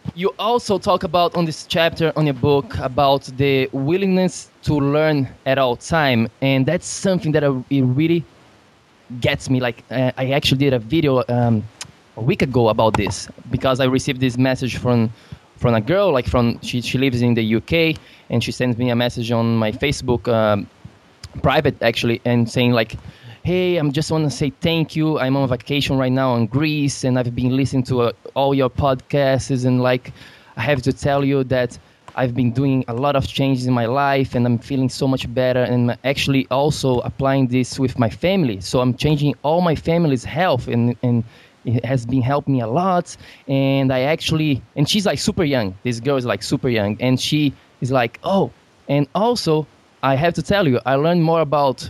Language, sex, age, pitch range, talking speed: English, male, 20-39, 120-145 Hz, 200 wpm